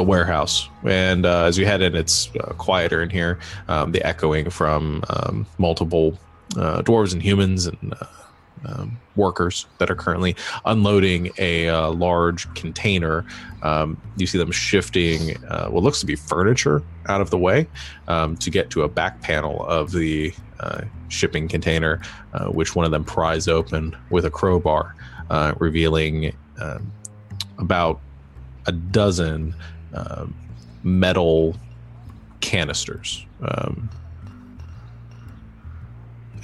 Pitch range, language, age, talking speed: 80-100 Hz, English, 20-39, 135 wpm